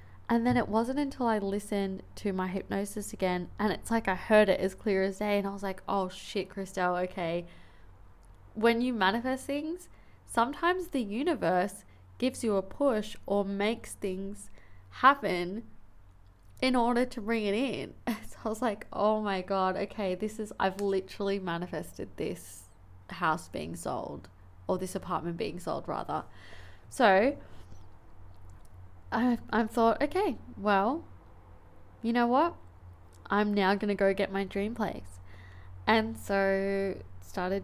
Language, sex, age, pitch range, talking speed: English, female, 20-39, 160-210 Hz, 150 wpm